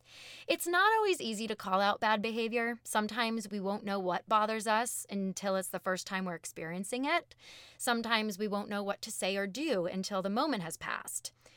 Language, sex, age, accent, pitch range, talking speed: English, female, 20-39, American, 180-245 Hz, 195 wpm